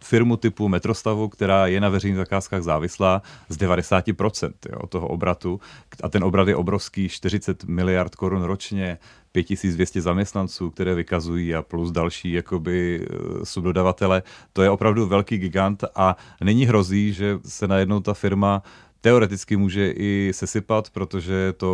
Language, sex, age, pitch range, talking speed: Czech, male, 30-49, 95-105 Hz, 140 wpm